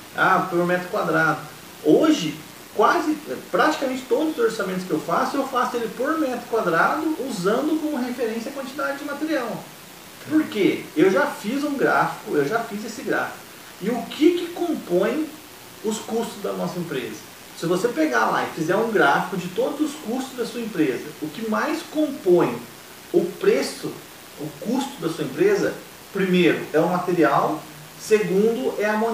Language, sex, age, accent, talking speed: Portuguese, male, 40-59, Brazilian, 170 wpm